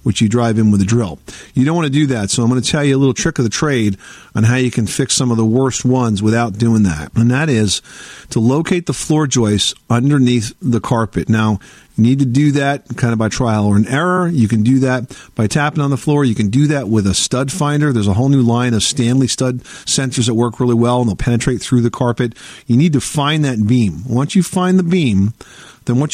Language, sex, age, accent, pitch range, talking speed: English, male, 50-69, American, 115-145 Hz, 255 wpm